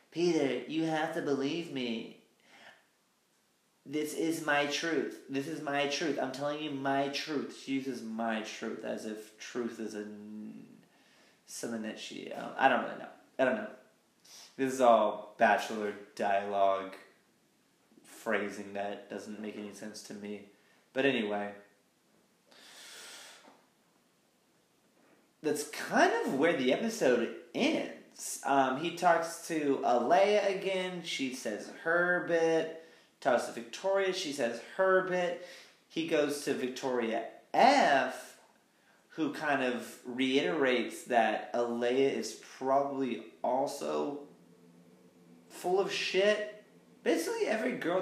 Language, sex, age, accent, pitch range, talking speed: English, male, 30-49, American, 110-160 Hz, 120 wpm